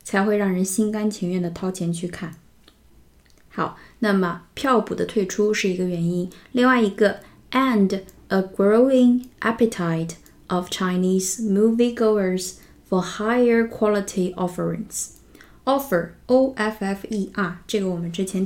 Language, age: Chinese, 20-39